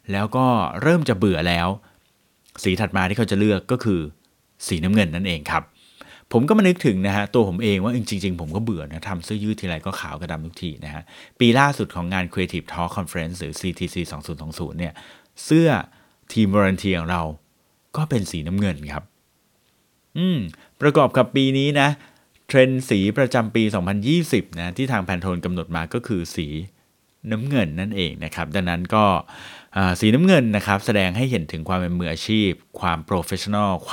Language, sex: Thai, male